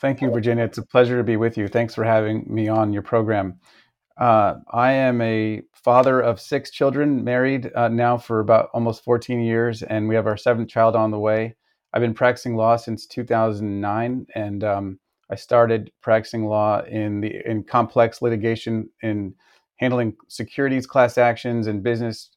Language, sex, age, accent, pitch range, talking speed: English, male, 30-49, American, 110-120 Hz, 185 wpm